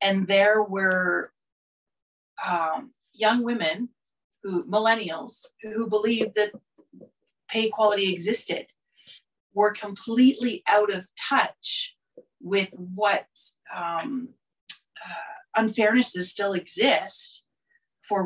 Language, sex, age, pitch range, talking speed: English, female, 30-49, 185-230 Hz, 90 wpm